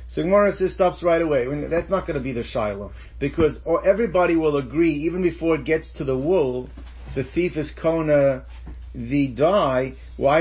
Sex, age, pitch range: male, 50-69, 135-165 Hz